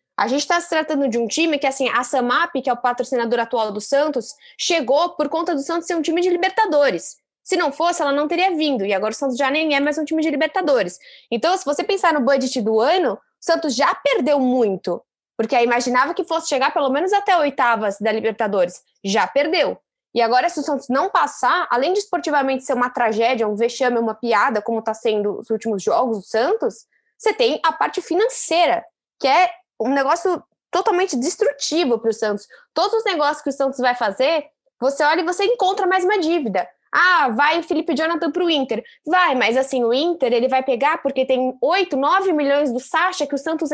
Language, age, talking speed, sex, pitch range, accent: Portuguese, 10-29, 215 wpm, female, 245-330 Hz, Brazilian